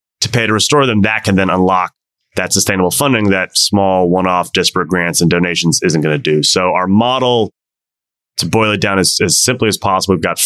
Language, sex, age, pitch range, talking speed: English, male, 30-49, 85-105 Hz, 205 wpm